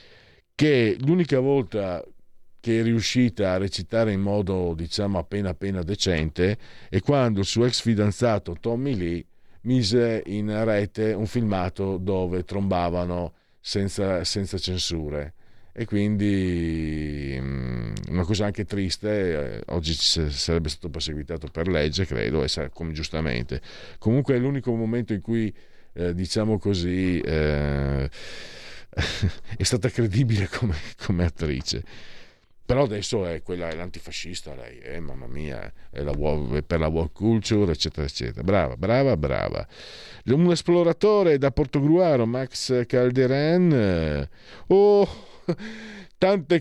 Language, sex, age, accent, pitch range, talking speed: Italian, male, 50-69, native, 85-125 Hz, 120 wpm